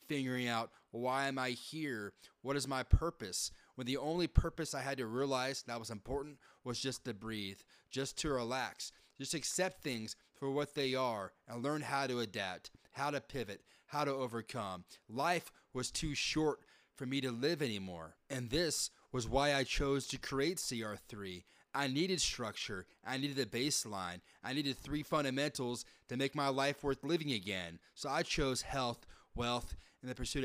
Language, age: English, 30-49